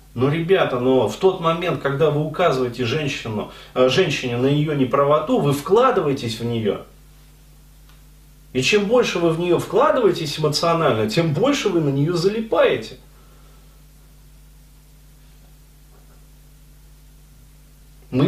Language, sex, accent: Russian, male, native